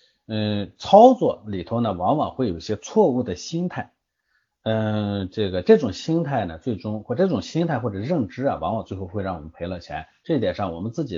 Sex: male